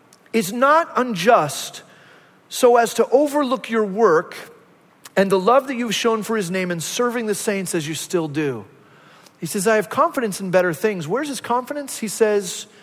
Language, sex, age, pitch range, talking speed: English, male, 40-59, 180-240 Hz, 180 wpm